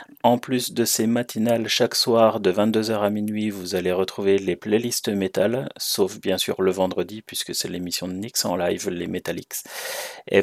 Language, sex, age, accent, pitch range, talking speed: French, male, 30-49, French, 95-115 Hz, 185 wpm